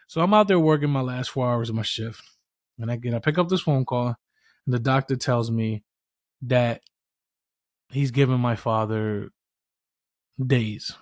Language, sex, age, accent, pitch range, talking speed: English, male, 20-39, American, 115-145 Hz, 175 wpm